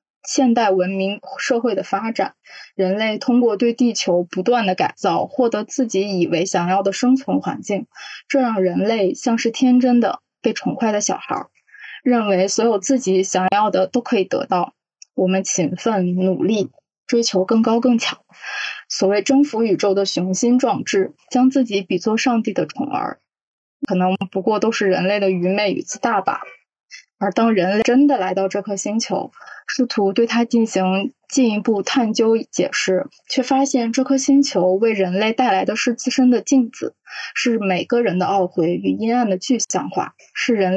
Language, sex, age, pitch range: Chinese, female, 20-39, 195-250 Hz